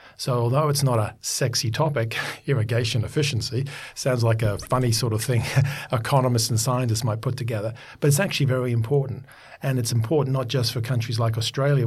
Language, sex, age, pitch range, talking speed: English, male, 50-69, 115-140 Hz, 180 wpm